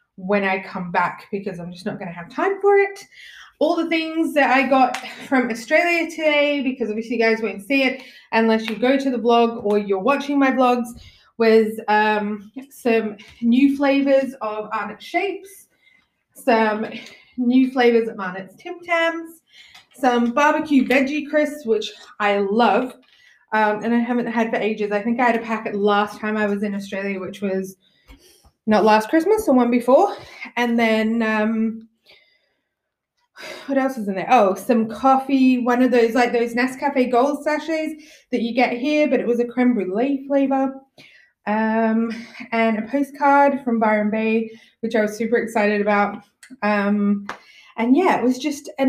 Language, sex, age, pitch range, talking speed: English, female, 20-39, 215-275 Hz, 170 wpm